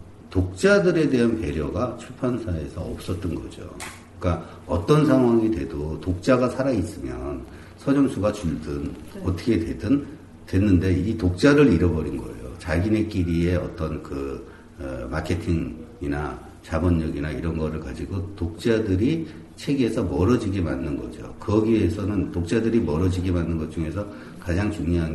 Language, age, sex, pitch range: Korean, 60-79, male, 85-110 Hz